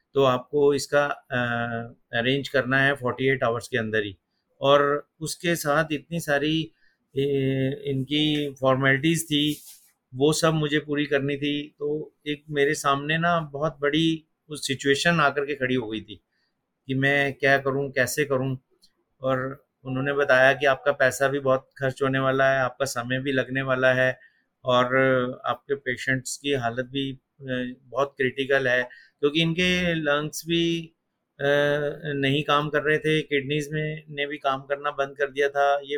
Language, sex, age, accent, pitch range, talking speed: Hindi, male, 50-69, native, 135-150 Hz, 160 wpm